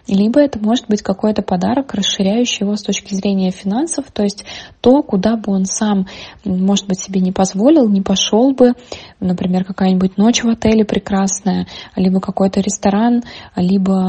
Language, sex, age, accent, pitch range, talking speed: Russian, female, 20-39, native, 185-215 Hz, 160 wpm